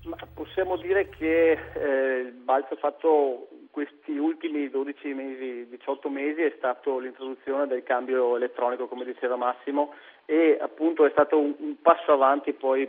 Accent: native